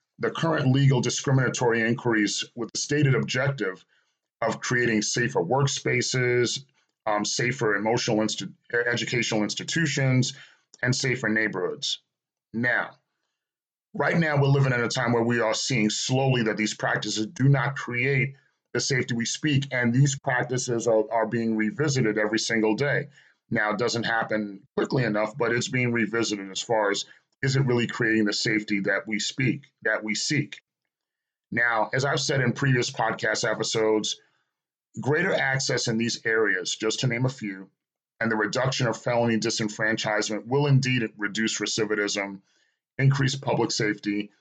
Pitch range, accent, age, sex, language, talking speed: 110-135 Hz, American, 40-59, male, English, 150 wpm